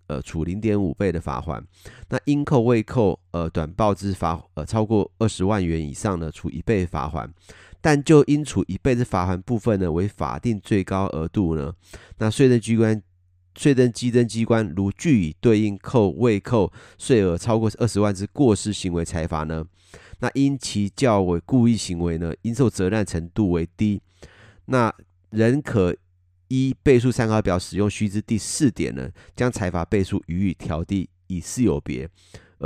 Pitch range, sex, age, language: 85-110 Hz, male, 30-49, Chinese